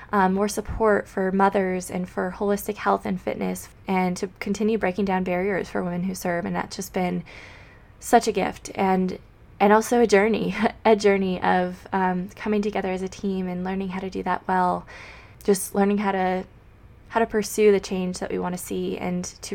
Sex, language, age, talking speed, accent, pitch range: female, English, 20-39, 200 wpm, American, 180-210 Hz